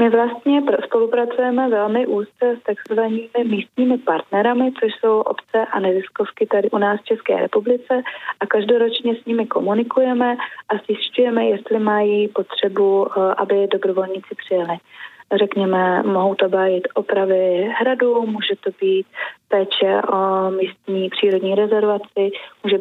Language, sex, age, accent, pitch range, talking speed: Czech, female, 20-39, native, 195-230 Hz, 125 wpm